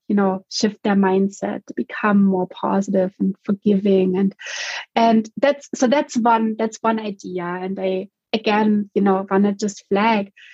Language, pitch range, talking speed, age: English, 195-220 Hz, 165 wpm, 30-49